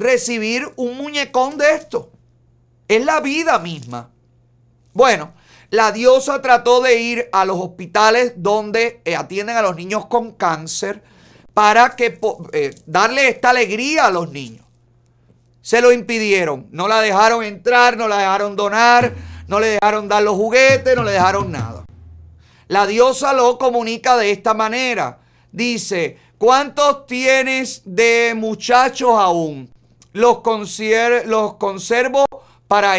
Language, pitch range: Spanish, 195-240 Hz